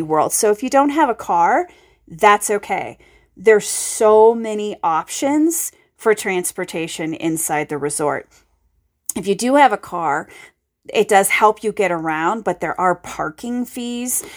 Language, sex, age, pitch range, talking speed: English, female, 30-49, 175-245 Hz, 150 wpm